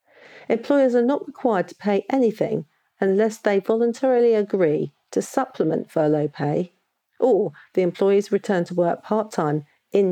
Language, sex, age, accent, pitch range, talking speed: English, female, 50-69, British, 165-215 Hz, 135 wpm